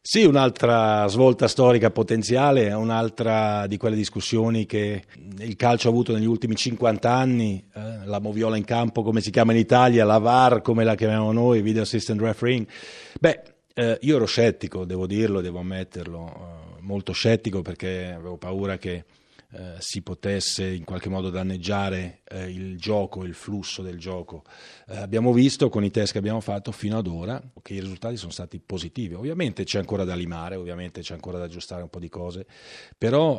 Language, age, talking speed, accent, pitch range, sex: Italian, 40-59, 180 wpm, native, 95-115 Hz, male